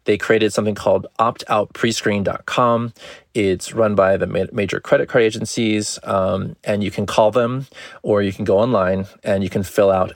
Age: 20-39